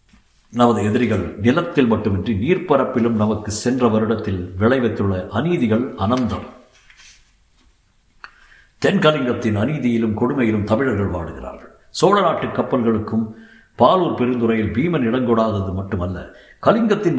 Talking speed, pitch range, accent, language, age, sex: 85 wpm, 100-125 Hz, native, Tamil, 60-79, male